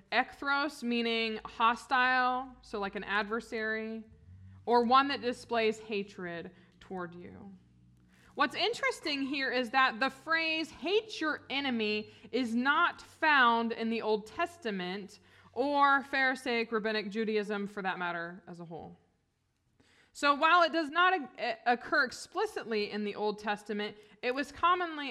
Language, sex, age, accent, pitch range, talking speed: English, female, 20-39, American, 195-250 Hz, 130 wpm